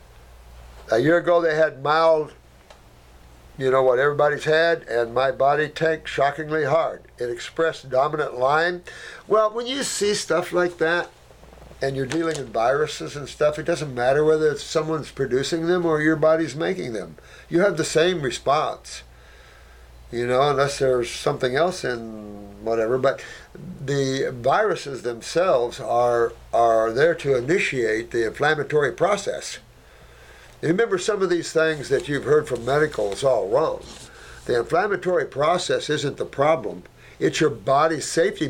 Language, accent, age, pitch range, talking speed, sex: English, American, 60-79, 125-180 Hz, 150 wpm, male